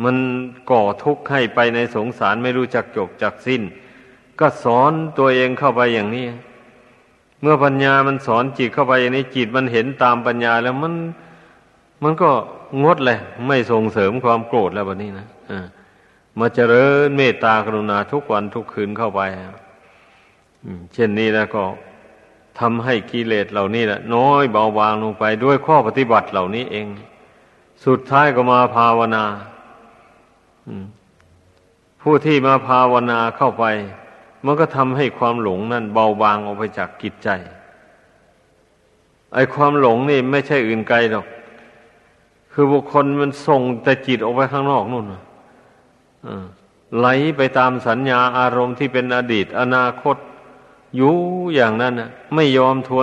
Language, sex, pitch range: Thai, male, 110-130 Hz